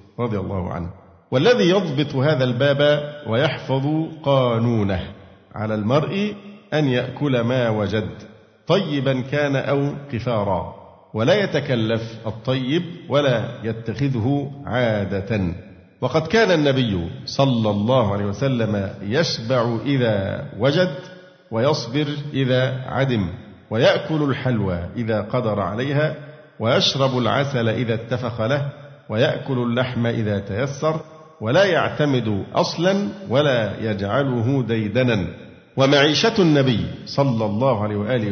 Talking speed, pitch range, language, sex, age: 100 wpm, 110-145 Hz, Arabic, male, 50-69